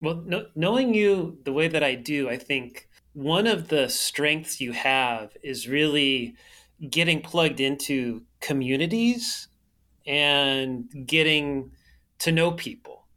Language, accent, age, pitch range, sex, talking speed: English, American, 30-49, 135-175 Hz, male, 125 wpm